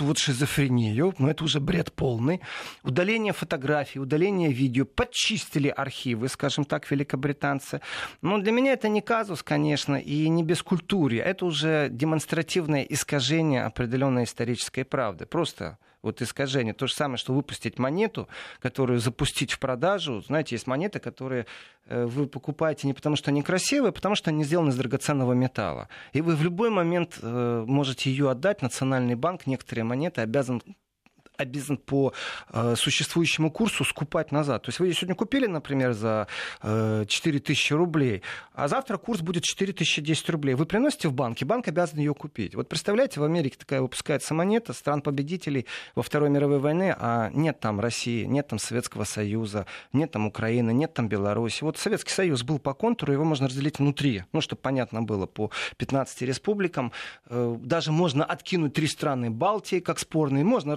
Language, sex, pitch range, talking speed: Russian, male, 125-165 Hz, 160 wpm